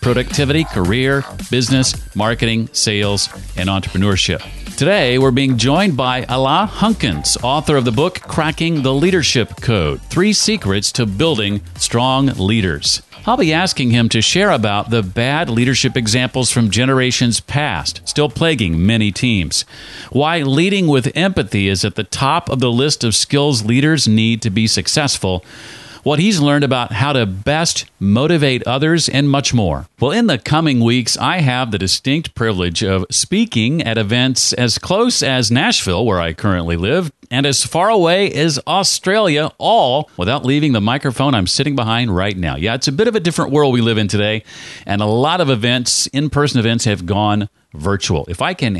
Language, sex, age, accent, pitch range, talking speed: English, male, 40-59, American, 105-145 Hz, 170 wpm